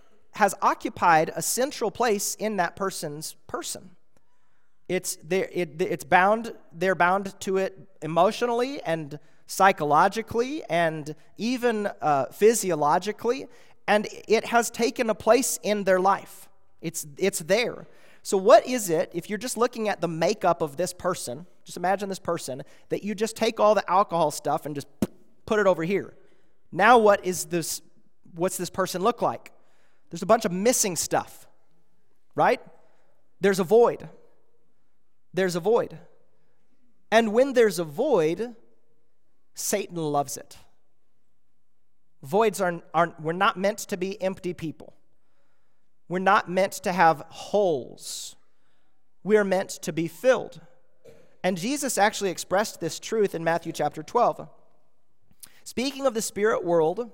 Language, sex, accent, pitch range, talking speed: English, male, American, 170-225 Hz, 140 wpm